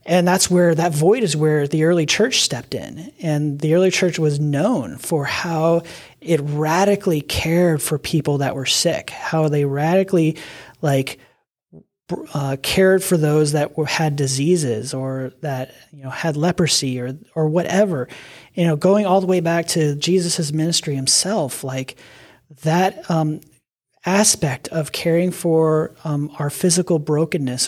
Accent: American